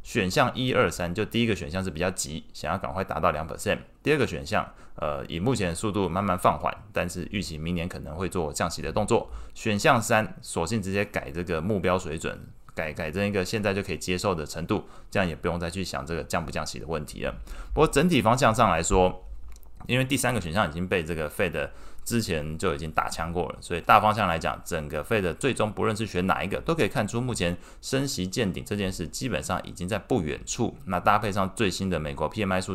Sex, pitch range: male, 80-100 Hz